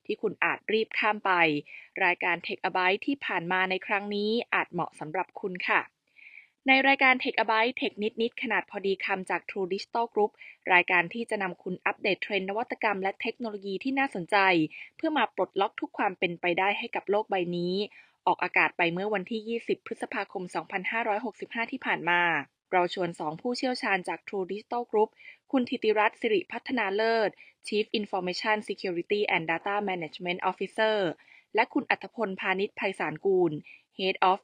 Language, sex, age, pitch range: Thai, female, 20-39, 180-220 Hz